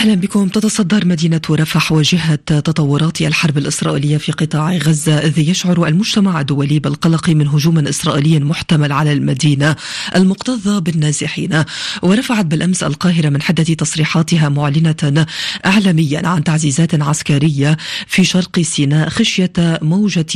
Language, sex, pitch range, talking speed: Arabic, female, 150-180 Hz, 120 wpm